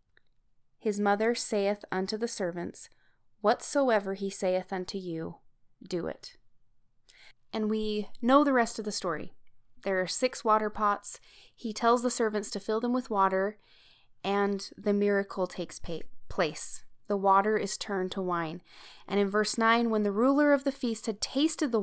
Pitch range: 185-235 Hz